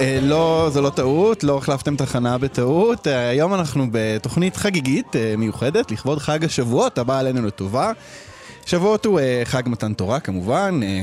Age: 20-39